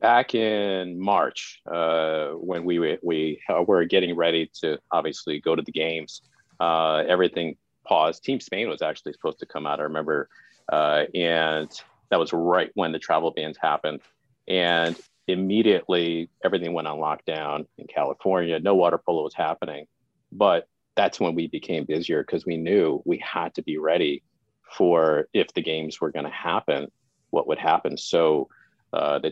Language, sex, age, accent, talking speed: English, male, 40-59, American, 165 wpm